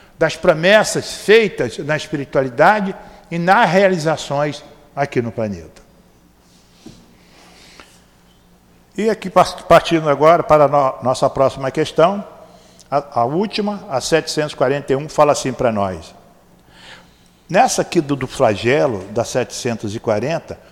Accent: Brazilian